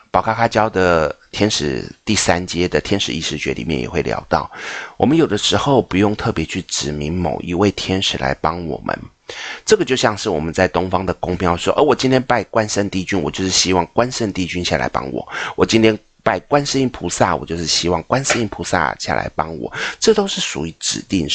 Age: 30-49